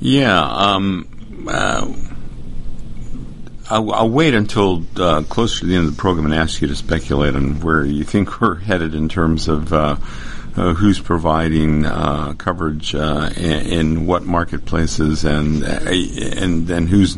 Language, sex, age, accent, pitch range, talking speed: English, male, 50-69, American, 80-95 Hz, 155 wpm